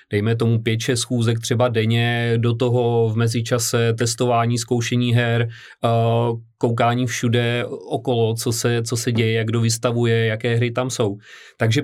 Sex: male